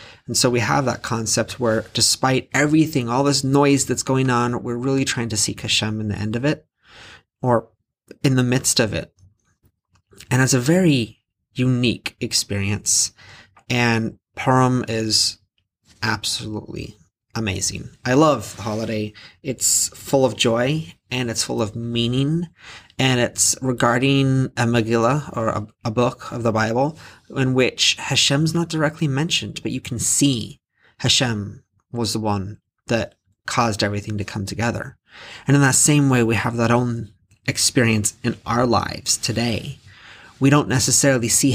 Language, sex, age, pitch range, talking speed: English, male, 30-49, 105-130 Hz, 155 wpm